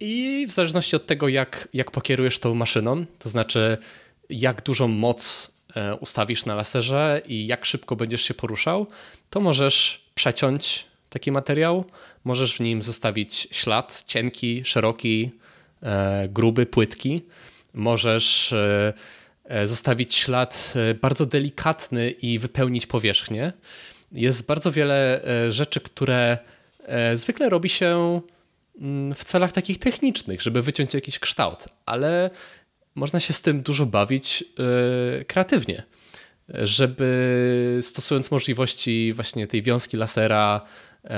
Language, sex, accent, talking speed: Polish, male, native, 110 wpm